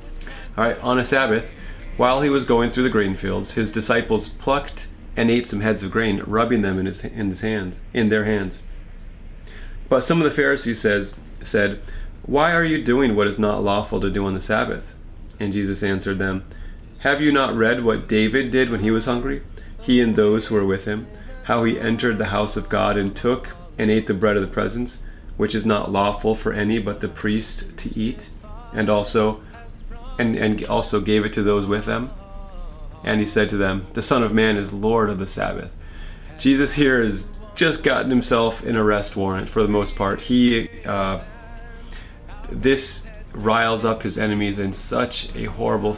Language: English